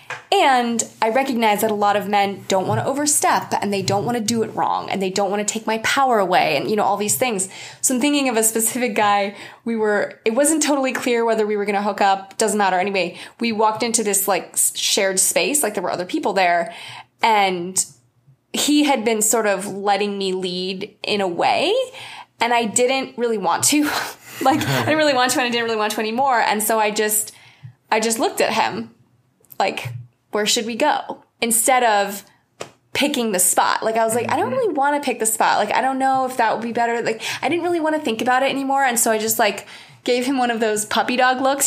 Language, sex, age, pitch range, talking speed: English, female, 20-39, 200-250 Hz, 240 wpm